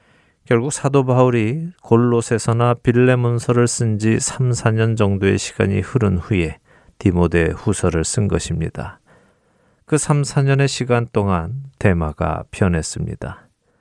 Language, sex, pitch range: Korean, male, 95-125 Hz